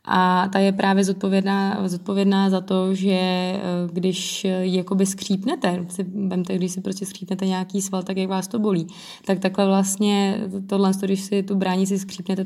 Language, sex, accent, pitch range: Czech, female, native, 180-195 Hz